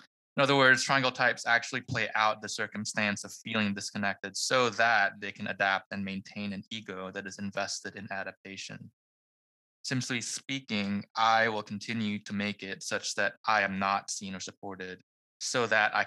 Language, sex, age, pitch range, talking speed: English, male, 20-39, 100-115 Hz, 170 wpm